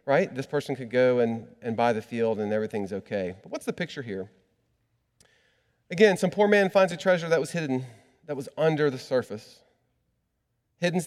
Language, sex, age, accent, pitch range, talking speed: English, male, 40-59, American, 120-160 Hz, 185 wpm